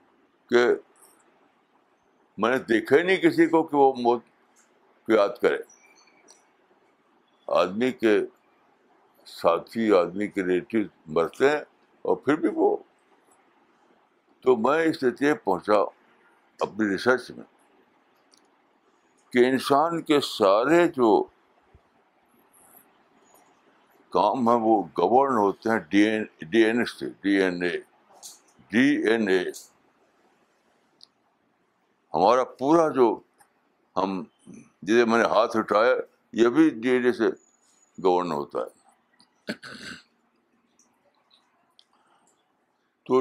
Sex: male